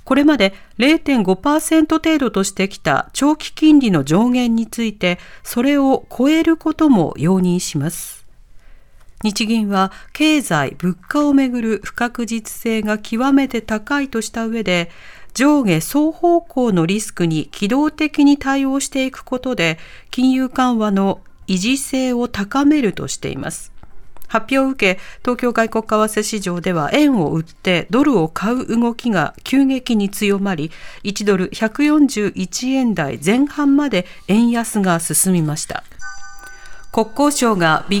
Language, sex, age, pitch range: Japanese, female, 40-59, 195-275 Hz